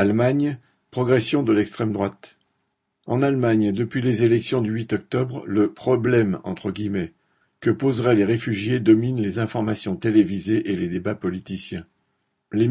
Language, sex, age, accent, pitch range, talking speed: French, male, 50-69, French, 100-120 Hz, 145 wpm